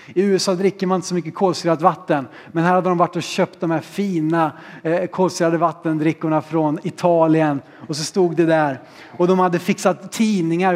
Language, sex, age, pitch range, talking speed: Swedish, male, 30-49, 165-220 Hz, 185 wpm